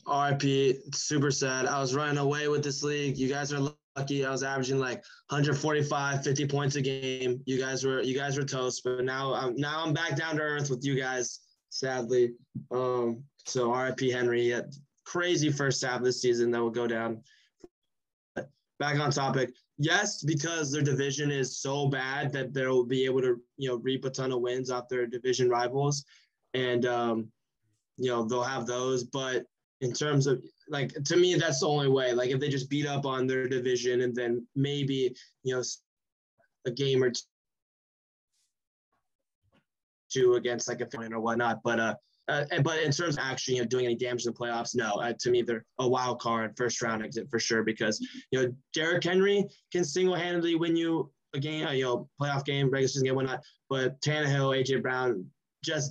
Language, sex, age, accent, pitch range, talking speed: English, male, 20-39, American, 125-145 Hz, 190 wpm